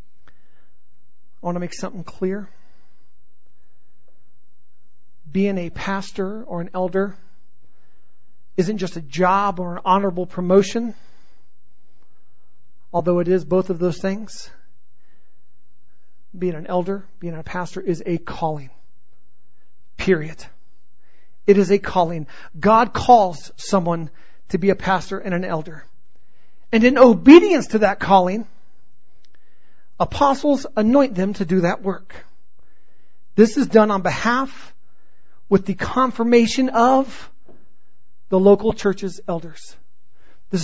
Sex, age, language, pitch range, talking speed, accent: male, 40-59, English, 170-210 Hz, 115 wpm, American